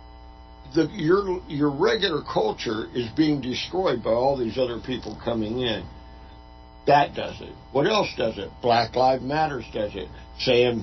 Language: English